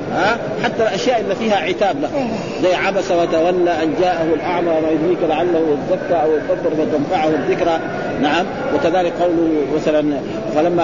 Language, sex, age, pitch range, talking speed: Arabic, male, 50-69, 160-195 Hz, 145 wpm